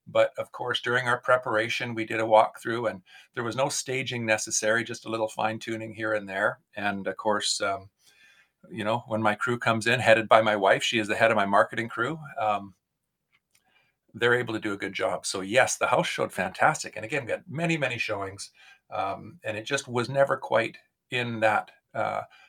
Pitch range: 110-140 Hz